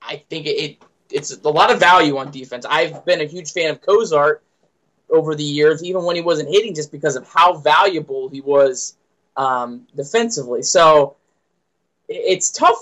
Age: 20-39